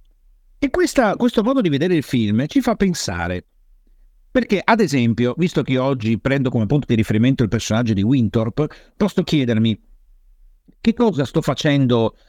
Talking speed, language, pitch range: 155 wpm, Italian, 115-175 Hz